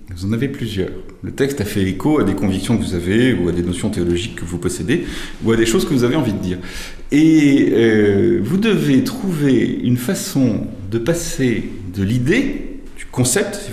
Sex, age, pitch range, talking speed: male, 30-49, 100-150 Hz, 205 wpm